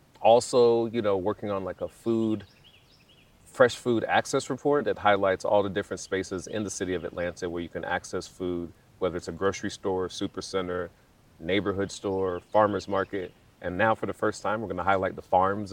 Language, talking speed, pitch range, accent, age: English, 195 wpm, 95-115 Hz, American, 30-49